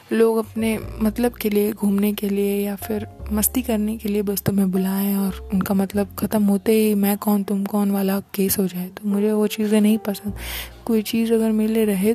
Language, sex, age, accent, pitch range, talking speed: Hindi, female, 20-39, native, 195-220 Hz, 215 wpm